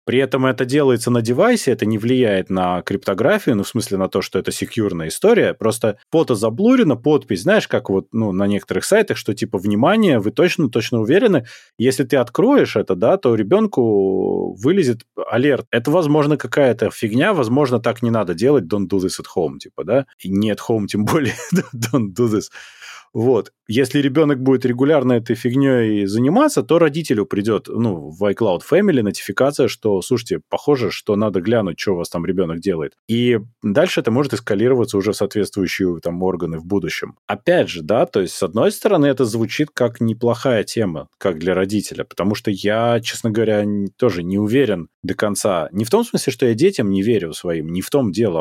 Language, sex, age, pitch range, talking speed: Russian, male, 20-39, 100-130 Hz, 185 wpm